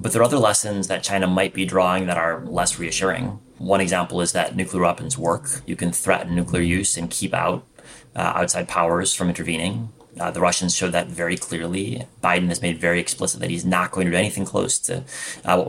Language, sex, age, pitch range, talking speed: English, male, 30-49, 85-100 Hz, 220 wpm